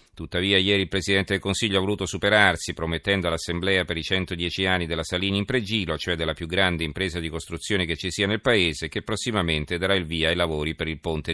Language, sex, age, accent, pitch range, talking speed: Italian, male, 40-59, native, 85-100 Hz, 215 wpm